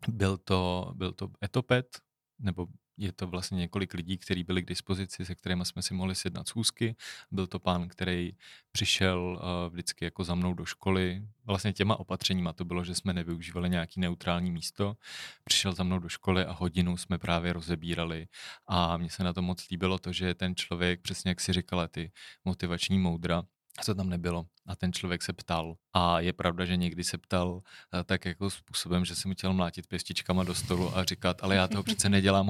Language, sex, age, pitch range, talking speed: Czech, male, 30-49, 85-95 Hz, 190 wpm